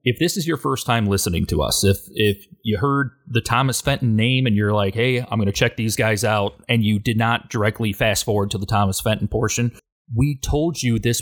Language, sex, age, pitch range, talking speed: English, male, 30-49, 110-155 Hz, 235 wpm